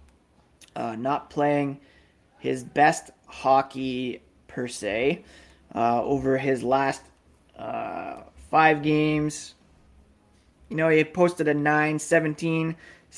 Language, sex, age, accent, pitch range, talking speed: English, male, 20-39, American, 125-160 Hz, 95 wpm